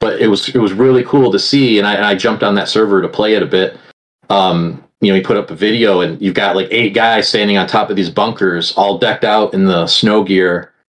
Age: 30-49